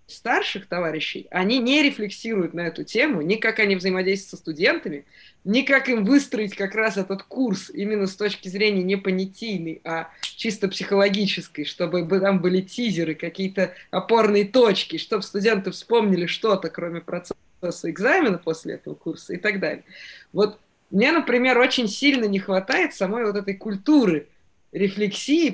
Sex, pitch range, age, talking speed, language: female, 180-225 Hz, 20-39, 150 wpm, Russian